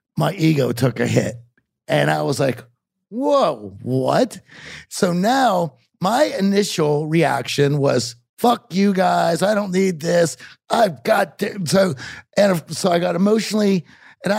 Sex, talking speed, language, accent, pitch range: male, 140 wpm, English, American, 130-170 Hz